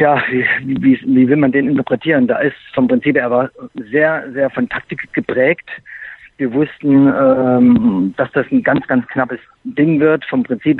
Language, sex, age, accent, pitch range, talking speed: German, male, 50-69, German, 130-155 Hz, 180 wpm